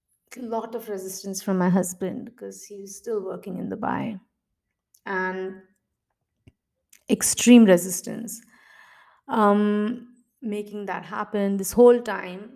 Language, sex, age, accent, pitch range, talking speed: English, female, 20-39, Indian, 190-235 Hz, 105 wpm